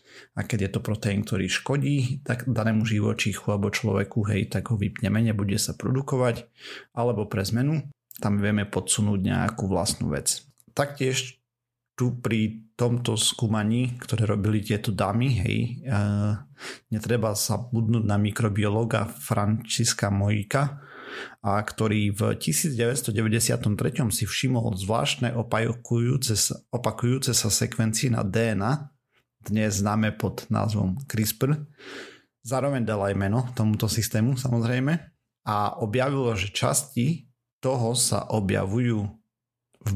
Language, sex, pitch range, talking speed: Slovak, male, 105-125 Hz, 120 wpm